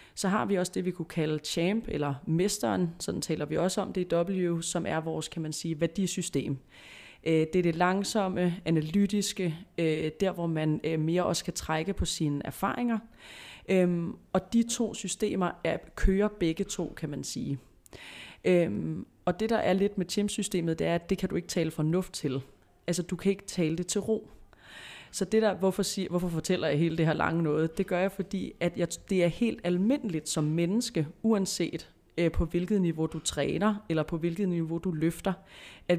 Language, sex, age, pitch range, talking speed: Danish, female, 30-49, 165-195 Hz, 190 wpm